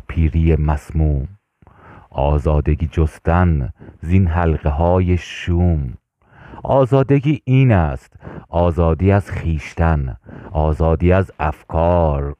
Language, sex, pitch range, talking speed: Persian, male, 80-105 Hz, 80 wpm